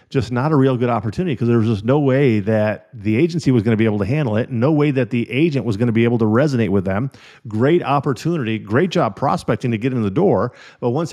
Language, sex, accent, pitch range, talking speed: English, male, American, 110-135 Hz, 265 wpm